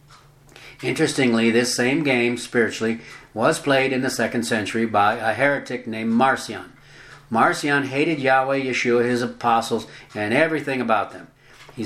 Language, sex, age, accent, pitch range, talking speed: English, male, 60-79, American, 115-145 Hz, 135 wpm